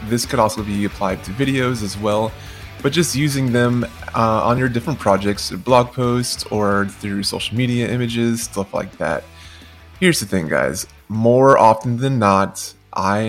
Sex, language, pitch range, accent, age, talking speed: male, English, 100-120 Hz, American, 20-39, 170 wpm